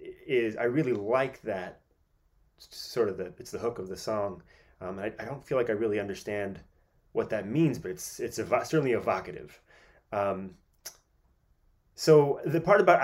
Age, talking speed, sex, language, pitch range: 30-49, 180 wpm, male, English, 105-140 Hz